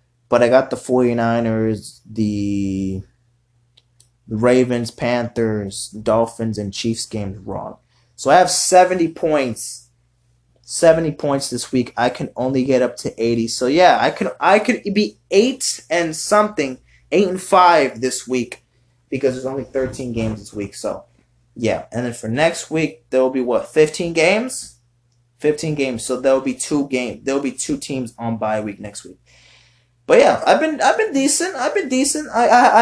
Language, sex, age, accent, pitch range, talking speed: English, male, 20-39, American, 120-155 Hz, 165 wpm